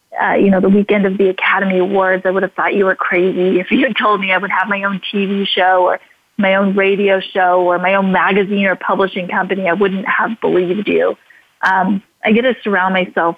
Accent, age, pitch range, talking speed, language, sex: American, 30-49, 185-205 Hz, 230 wpm, English, female